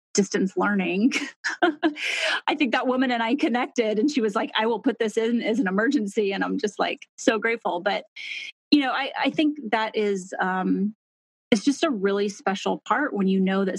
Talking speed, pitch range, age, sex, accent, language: 200 wpm, 185-230 Hz, 30-49, female, American, English